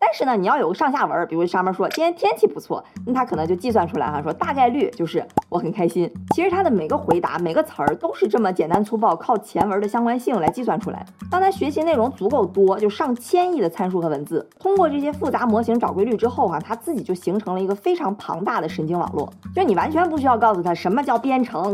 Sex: female